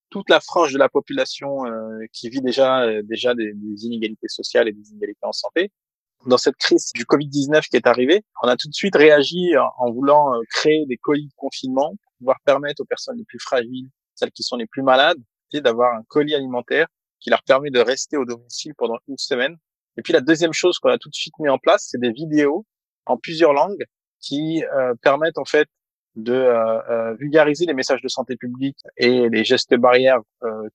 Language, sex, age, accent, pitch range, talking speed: French, male, 20-39, French, 125-165 Hz, 215 wpm